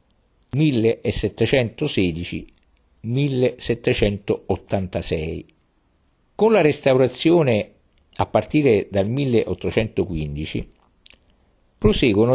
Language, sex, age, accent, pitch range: Italian, male, 50-69, native, 90-130 Hz